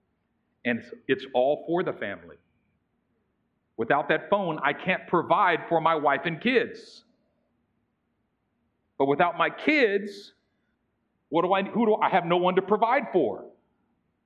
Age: 50-69